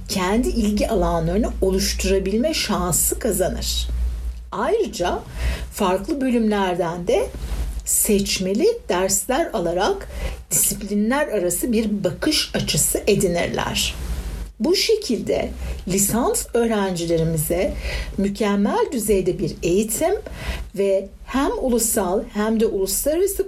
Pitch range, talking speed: 180-245 Hz, 85 wpm